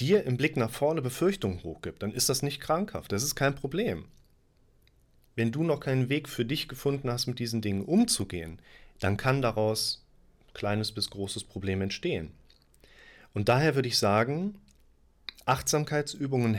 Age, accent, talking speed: 30-49, German, 160 wpm